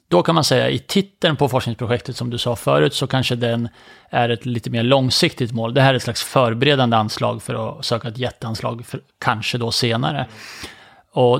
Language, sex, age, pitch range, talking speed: English, male, 30-49, 120-145 Hz, 205 wpm